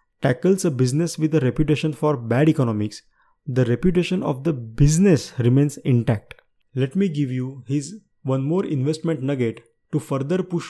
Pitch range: 120-155 Hz